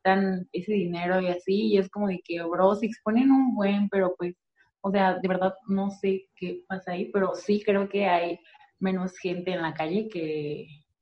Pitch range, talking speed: 190-265 Hz, 195 wpm